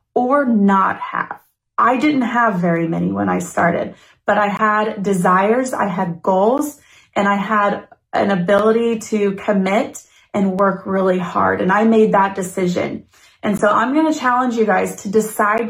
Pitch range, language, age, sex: 180-215 Hz, Thai, 30-49, female